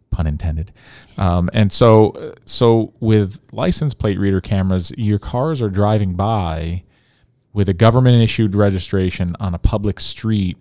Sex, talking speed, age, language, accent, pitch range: male, 140 wpm, 40-59, English, American, 90-110 Hz